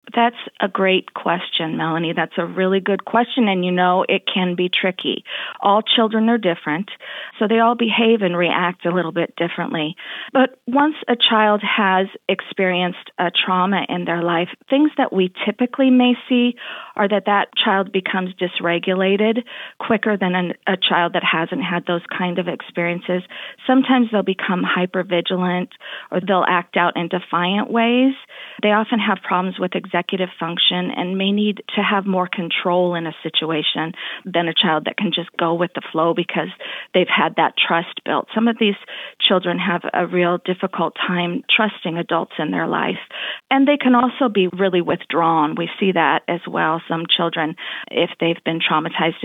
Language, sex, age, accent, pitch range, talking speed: English, female, 40-59, American, 170-210 Hz, 170 wpm